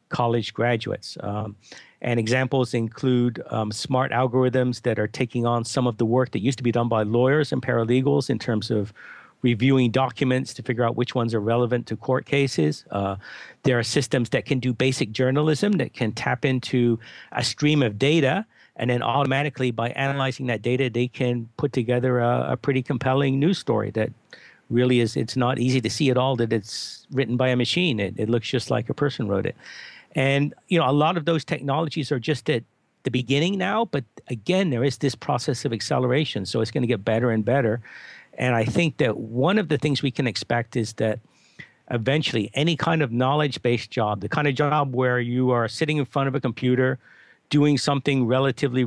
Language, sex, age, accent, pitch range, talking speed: English, male, 50-69, American, 115-140 Hz, 205 wpm